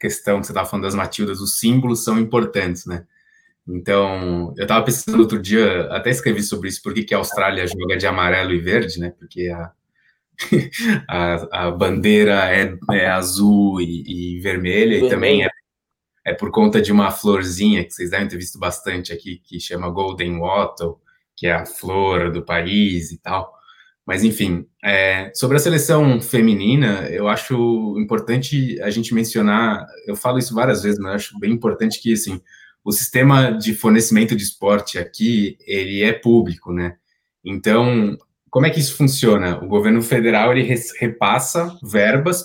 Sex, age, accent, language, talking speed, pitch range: male, 20-39, Brazilian, Portuguese, 160 wpm, 95-130 Hz